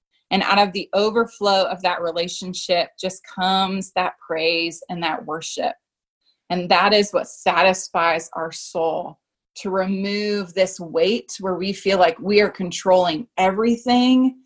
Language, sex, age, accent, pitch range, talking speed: English, female, 20-39, American, 180-215 Hz, 140 wpm